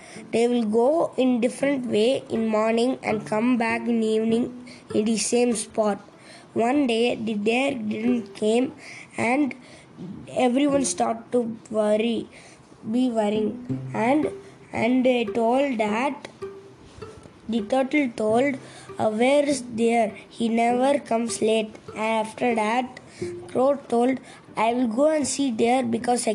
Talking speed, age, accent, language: 135 wpm, 20-39, Indian, English